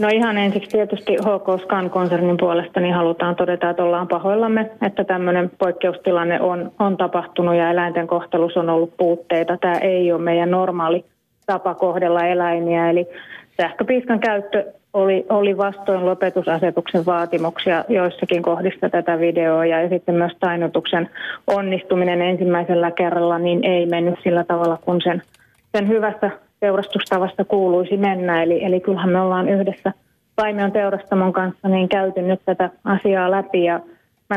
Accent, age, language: native, 30-49, Finnish